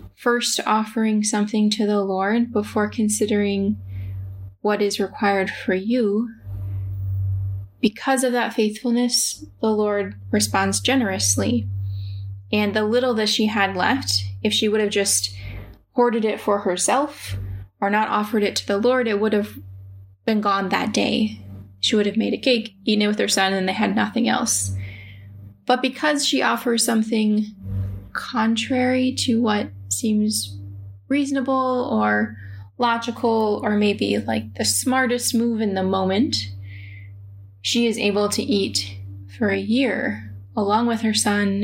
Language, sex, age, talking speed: English, female, 10-29, 145 wpm